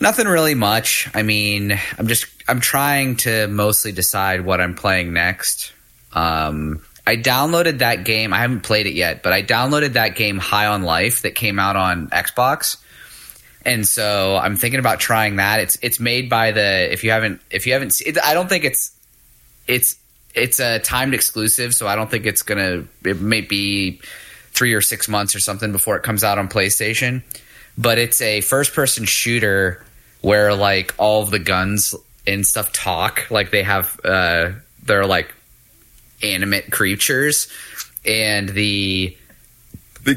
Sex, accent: male, American